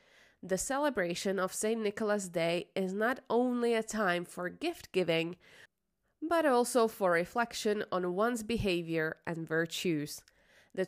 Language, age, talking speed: Slovak, 20-39, 130 wpm